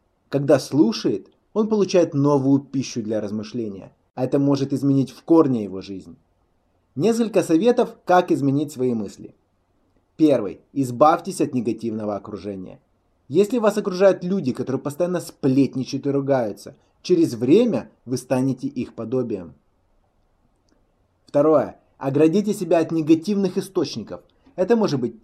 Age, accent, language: 20-39, native, Russian